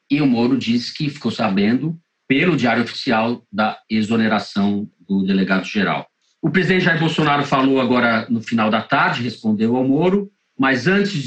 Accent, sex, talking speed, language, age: Brazilian, male, 155 wpm, Portuguese, 40-59